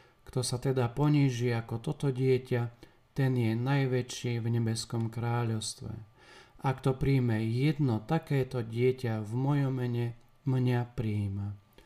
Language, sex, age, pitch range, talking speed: Slovak, male, 40-59, 120-135 Hz, 120 wpm